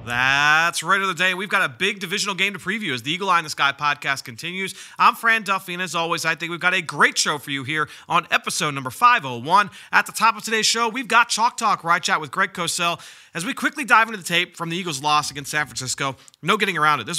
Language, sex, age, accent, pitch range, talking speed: English, male, 30-49, American, 150-190 Hz, 265 wpm